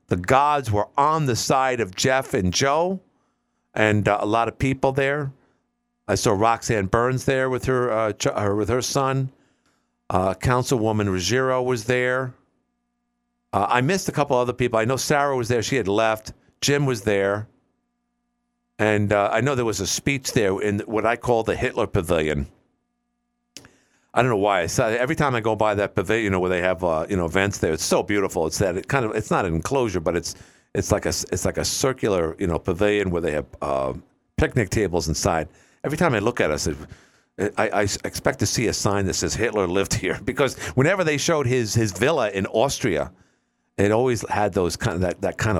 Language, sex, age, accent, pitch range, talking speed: English, male, 50-69, American, 90-130 Hz, 210 wpm